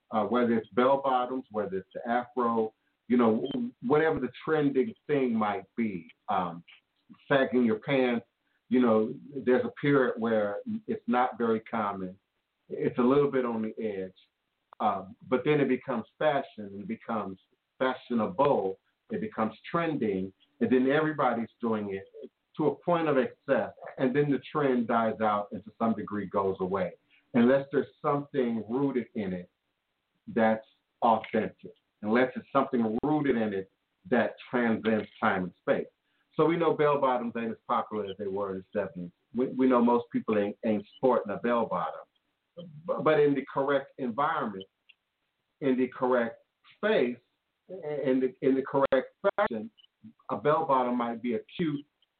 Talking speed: 155 wpm